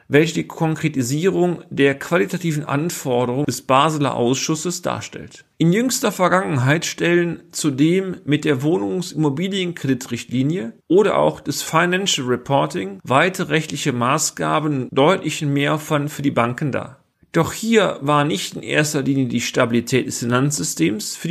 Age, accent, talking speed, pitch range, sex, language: 40-59, German, 125 wpm, 135-170 Hz, male, German